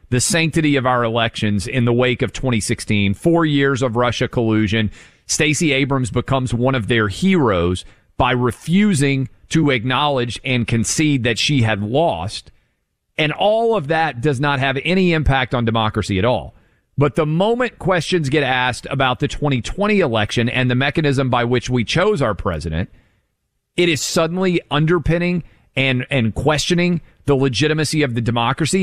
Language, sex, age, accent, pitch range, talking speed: English, male, 40-59, American, 125-180 Hz, 160 wpm